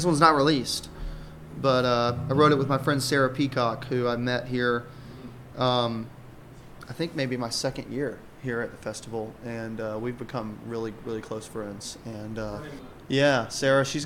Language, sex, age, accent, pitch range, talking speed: English, male, 20-39, American, 115-140 Hz, 175 wpm